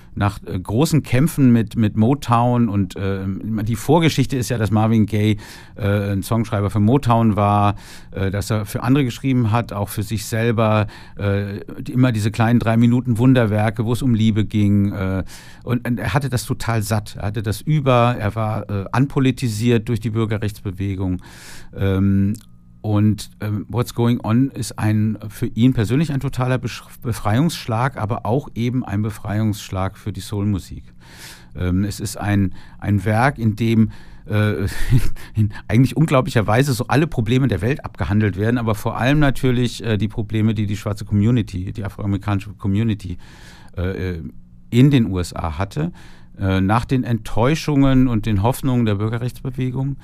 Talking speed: 160 wpm